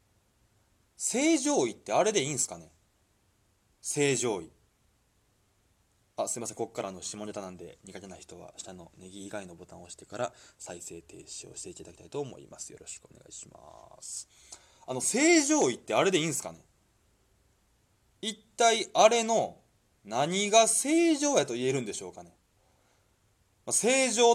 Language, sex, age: Japanese, male, 20-39